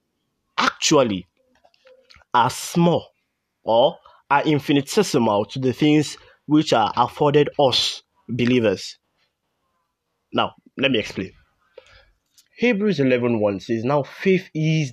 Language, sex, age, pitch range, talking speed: English, male, 20-39, 115-170 Hz, 100 wpm